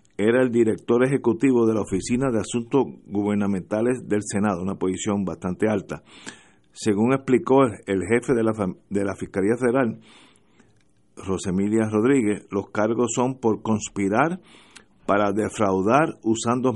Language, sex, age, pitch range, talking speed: Spanish, male, 50-69, 105-125 Hz, 130 wpm